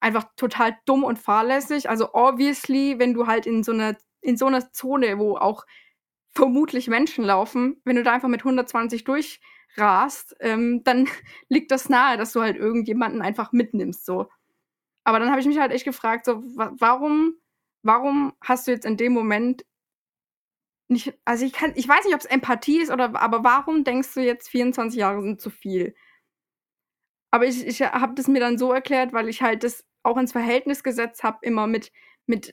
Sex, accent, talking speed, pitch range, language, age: female, German, 185 wpm, 230-270 Hz, German, 20-39